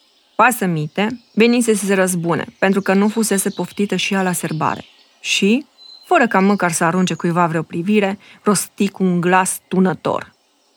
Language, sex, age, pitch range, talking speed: Romanian, female, 20-39, 180-230 Hz, 155 wpm